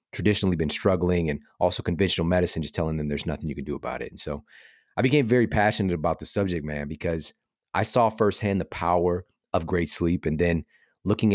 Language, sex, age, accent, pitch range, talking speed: English, male, 30-49, American, 80-100 Hz, 205 wpm